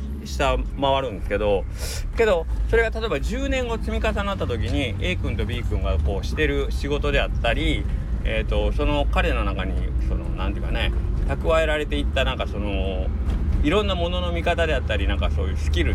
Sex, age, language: male, 40-59, Japanese